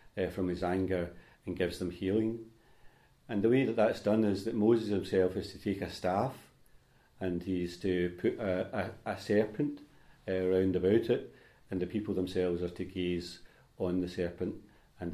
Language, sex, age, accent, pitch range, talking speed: English, male, 40-59, British, 90-105 Hz, 180 wpm